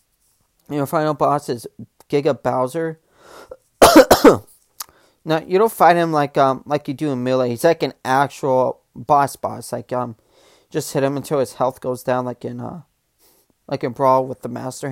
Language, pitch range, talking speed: English, 135-180 Hz, 175 wpm